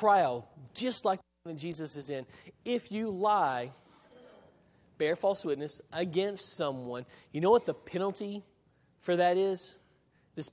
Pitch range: 140-185 Hz